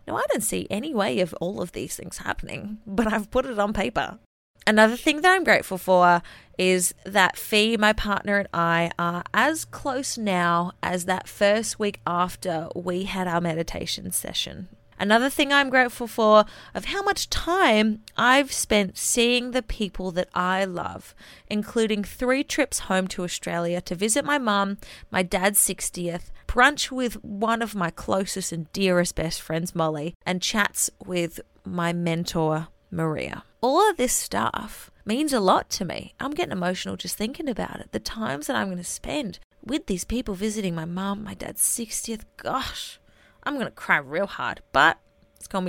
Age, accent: 20-39, Australian